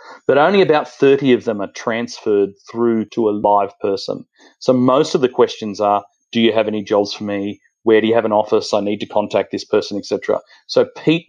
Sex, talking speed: male, 220 wpm